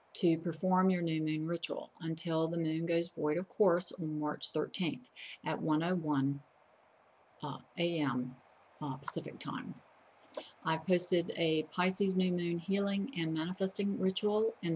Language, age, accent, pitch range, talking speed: English, 60-79, American, 160-185 Hz, 140 wpm